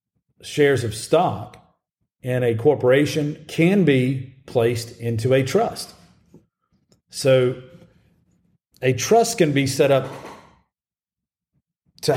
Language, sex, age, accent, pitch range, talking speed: English, male, 40-59, American, 115-135 Hz, 100 wpm